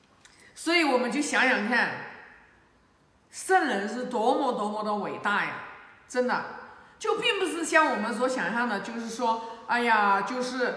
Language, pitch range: Chinese, 240-325 Hz